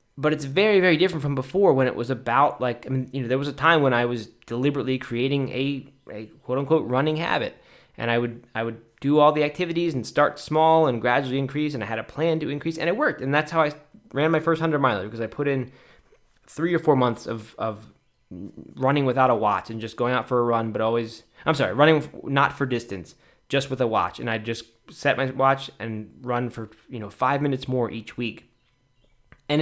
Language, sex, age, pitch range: English, male, 20-39, 120-145 Hz